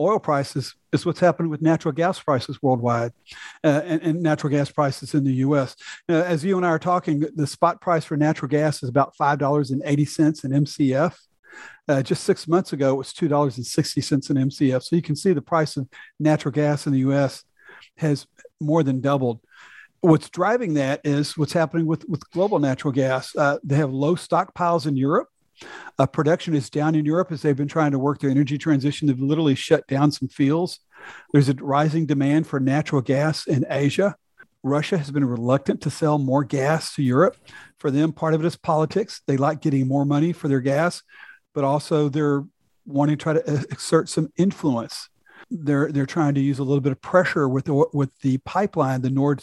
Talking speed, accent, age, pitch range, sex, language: 200 wpm, American, 50-69, 140-160 Hz, male, English